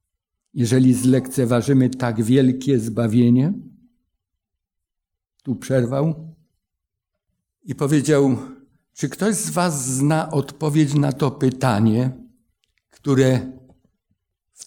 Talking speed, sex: 80 wpm, male